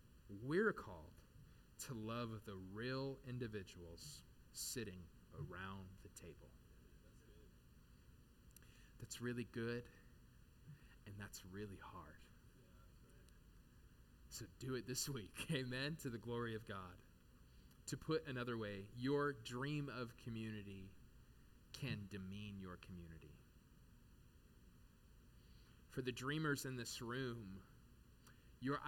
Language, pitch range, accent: English, 100-130 Hz, American